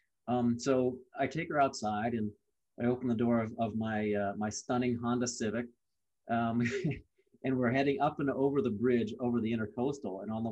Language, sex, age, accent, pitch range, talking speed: English, male, 30-49, American, 110-135 Hz, 195 wpm